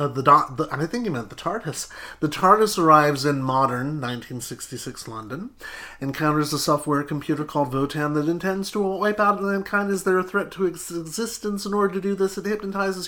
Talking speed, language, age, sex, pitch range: 205 wpm, English, 30-49, male, 150-200 Hz